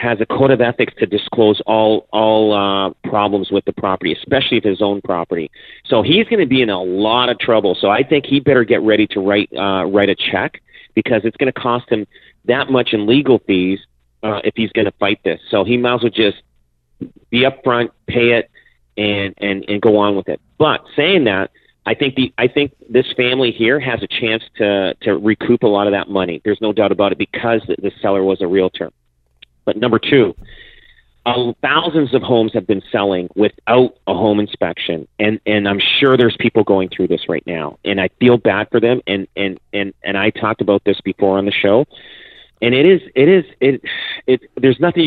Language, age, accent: English, 40-59, American